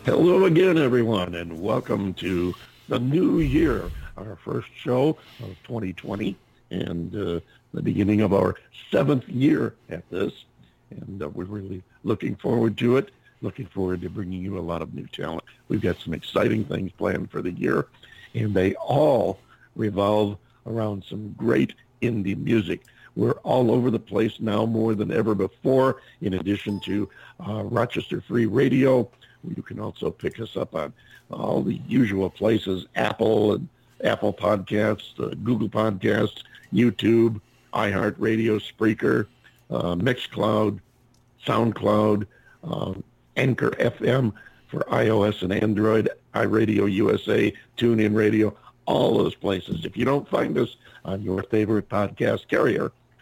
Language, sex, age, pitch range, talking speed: English, male, 50-69, 100-115 Hz, 140 wpm